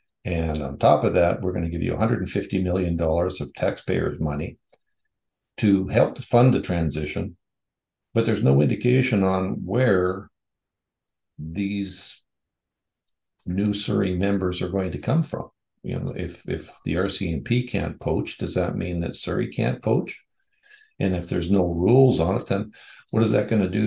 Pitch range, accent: 85-110 Hz, American